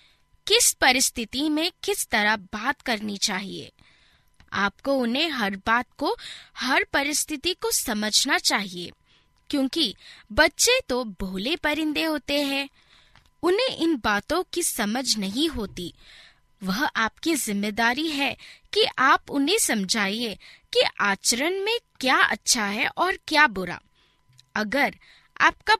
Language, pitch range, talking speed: Hindi, 210-305 Hz, 120 wpm